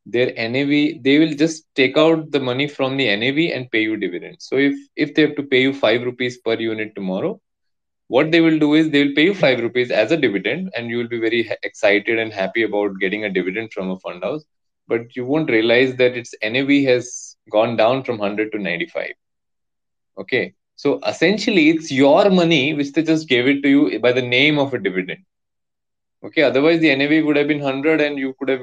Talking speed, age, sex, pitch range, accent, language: 220 wpm, 20-39, male, 115-160 Hz, Indian, English